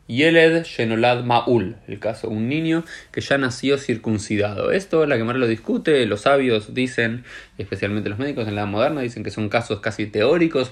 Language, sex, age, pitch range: Spanish, male, 20-39, 110-140 Hz